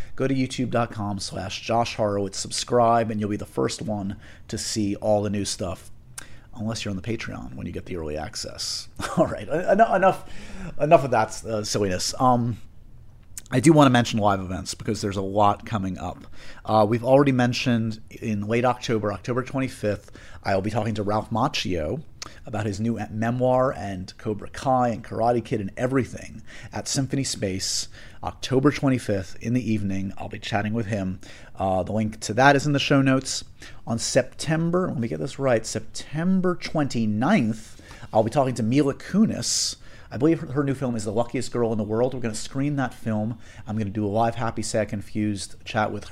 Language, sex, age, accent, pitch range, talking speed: English, male, 30-49, American, 105-120 Hz, 195 wpm